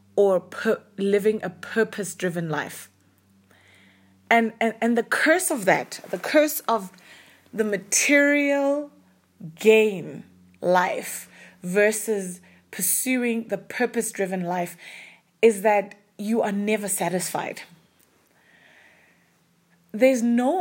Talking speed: 95 wpm